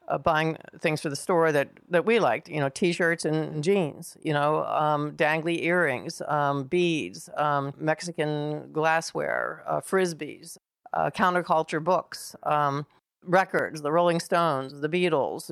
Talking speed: 145 wpm